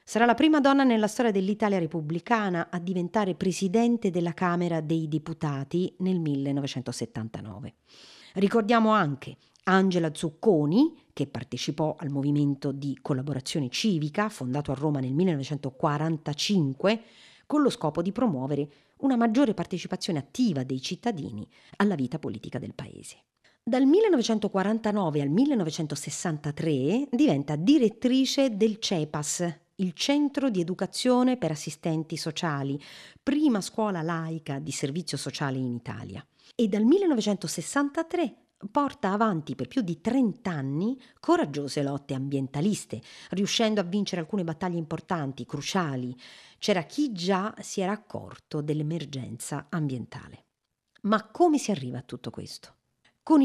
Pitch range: 145-220 Hz